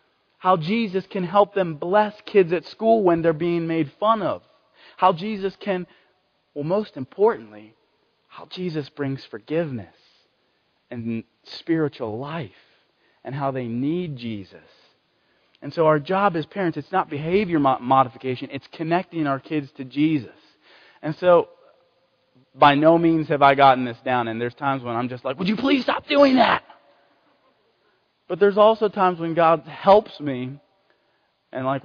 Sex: male